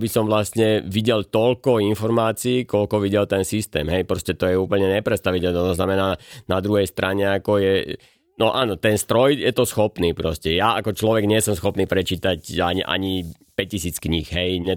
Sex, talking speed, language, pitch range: male, 180 wpm, Slovak, 85-100 Hz